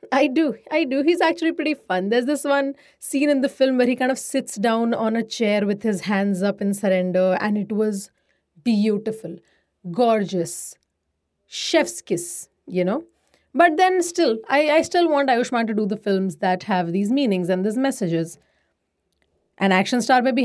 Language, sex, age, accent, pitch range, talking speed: English, female, 30-49, Indian, 195-265 Hz, 185 wpm